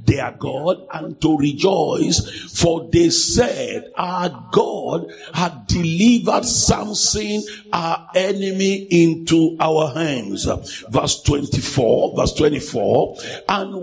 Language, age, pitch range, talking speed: English, 50-69, 165-210 Hz, 100 wpm